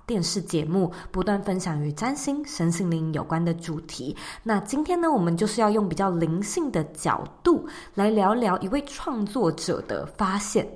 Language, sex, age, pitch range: Chinese, female, 20-39, 175-270 Hz